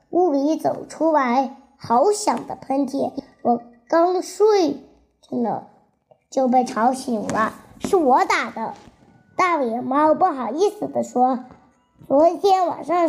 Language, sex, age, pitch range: Chinese, male, 20-39, 250-340 Hz